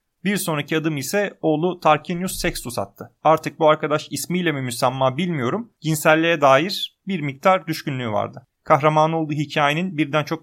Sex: male